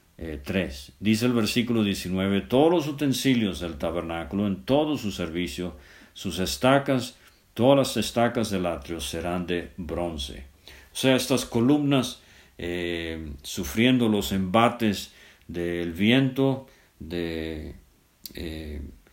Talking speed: 115 wpm